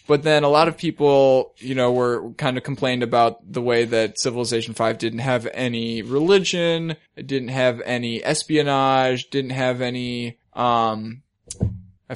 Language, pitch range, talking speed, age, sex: English, 115-145 Hz, 160 wpm, 10-29, male